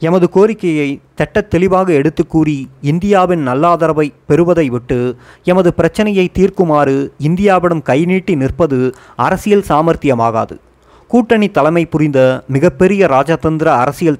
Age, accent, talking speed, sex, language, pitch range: 30-49, native, 95 wpm, male, Tamil, 135-175 Hz